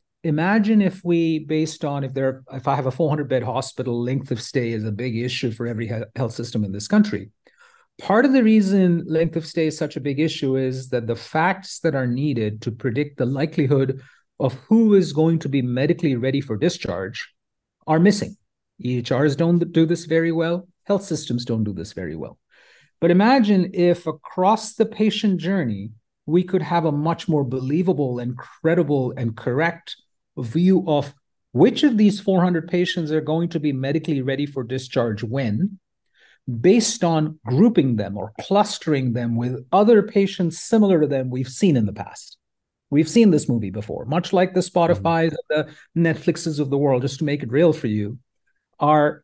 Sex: male